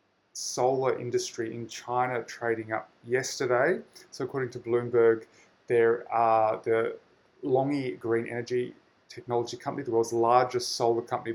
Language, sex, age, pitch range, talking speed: English, male, 20-39, 110-125 Hz, 125 wpm